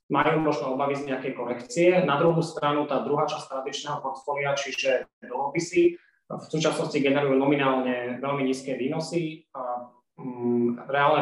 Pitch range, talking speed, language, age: 130-150 Hz, 135 wpm, Slovak, 20-39